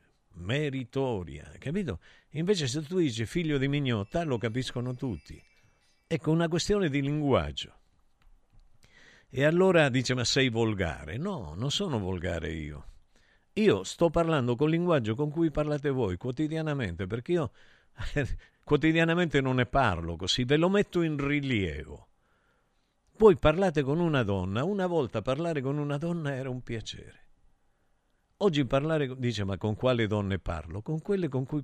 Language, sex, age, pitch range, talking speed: Italian, male, 50-69, 110-160 Hz, 145 wpm